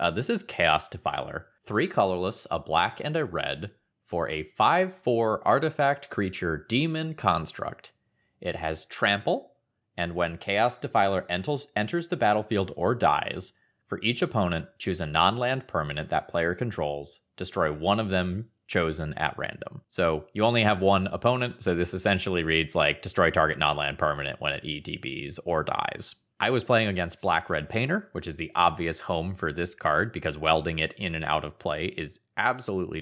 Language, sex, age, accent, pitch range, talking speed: English, male, 30-49, American, 85-115 Hz, 170 wpm